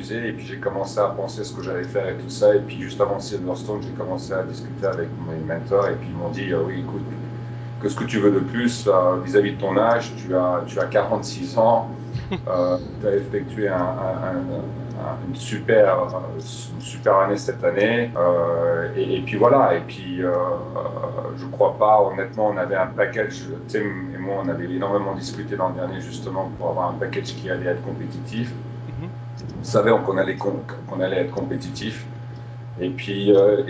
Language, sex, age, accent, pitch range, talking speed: French, male, 40-59, French, 100-125 Hz, 195 wpm